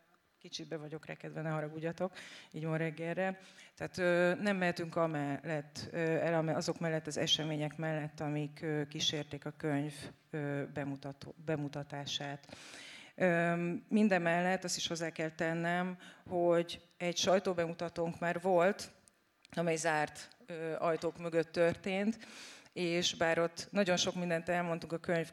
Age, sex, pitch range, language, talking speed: 30-49, female, 155-180 Hz, Hungarian, 120 wpm